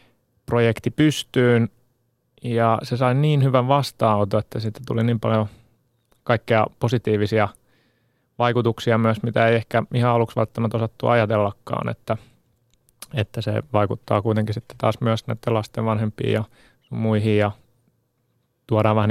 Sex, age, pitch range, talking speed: male, 30-49, 110-120 Hz, 125 wpm